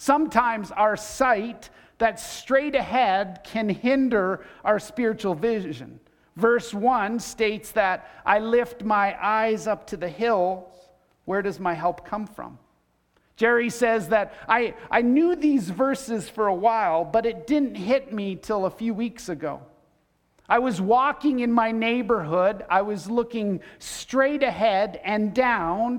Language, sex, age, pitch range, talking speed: English, male, 50-69, 195-240 Hz, 145 wpm